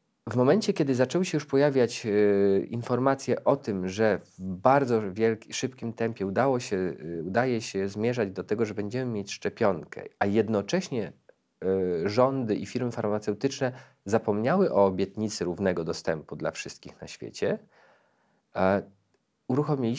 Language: Polish